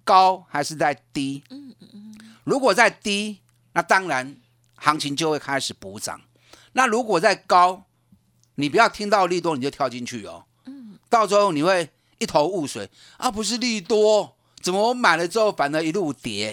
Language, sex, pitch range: Chinese, male, 130-210 Hz